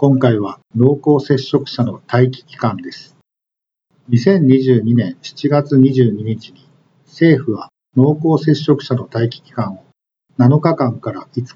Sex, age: male, 50-69